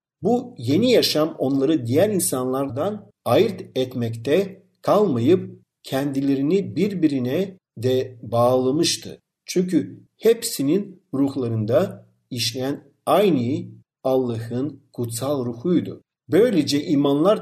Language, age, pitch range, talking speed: Turkish, 50-69, 130-185 Hz, 80 wpm